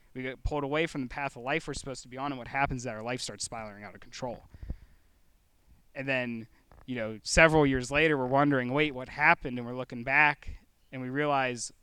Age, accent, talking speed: 20-39, American, 230 wpm